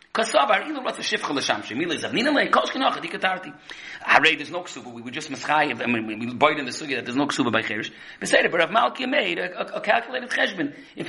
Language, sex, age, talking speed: English, male, 40-59, 190 wpm